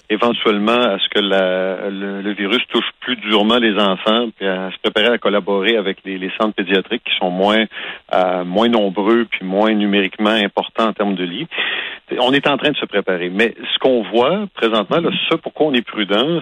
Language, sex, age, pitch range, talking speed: French, male, 50-69, 100-120 Hz, 200 wpm